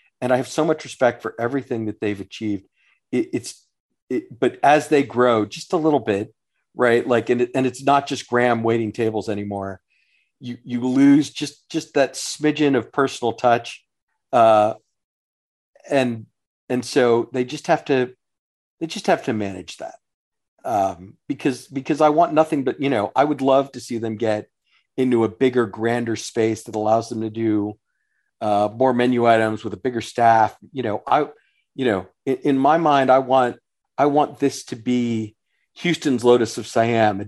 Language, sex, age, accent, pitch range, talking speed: English, male, 40-59, American, 110-135 Hz, 180 wpm